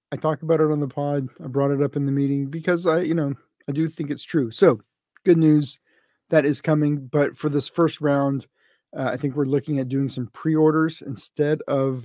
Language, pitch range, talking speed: English, 130-150 Hz, 220 wpm